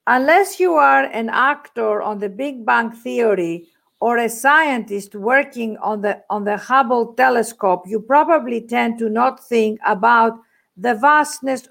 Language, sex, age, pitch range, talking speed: English, female, 50-69, 215-280 Hz, 150 wpm